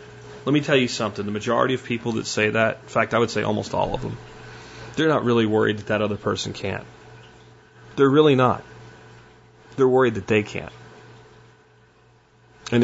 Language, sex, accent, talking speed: English, male, American, 180 wpm